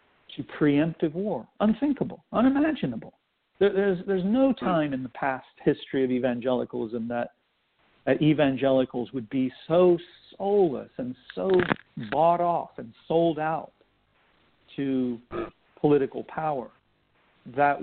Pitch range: 130-180 Hz